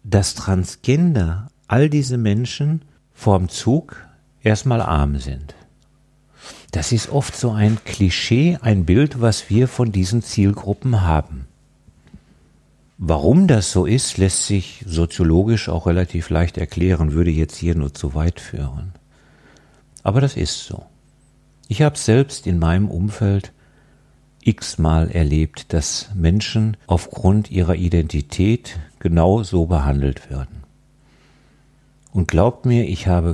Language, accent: German, German